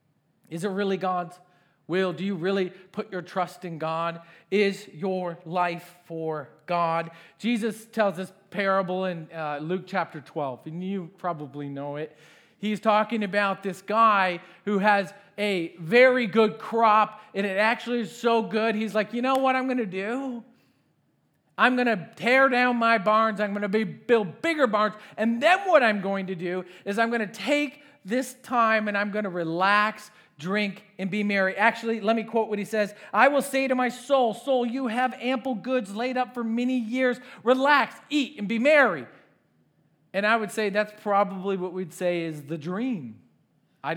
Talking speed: 185 wpm